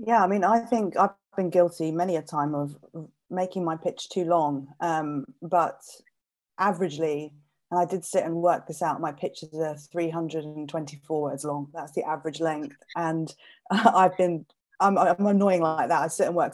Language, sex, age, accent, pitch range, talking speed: English, female, 20-39, British, 160-200 Hz, 185 wpm